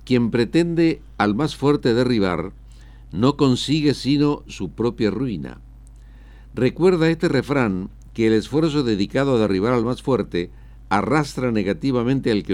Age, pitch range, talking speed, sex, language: 60-79, 100-140 Hz, 135 wpm, male, Spanish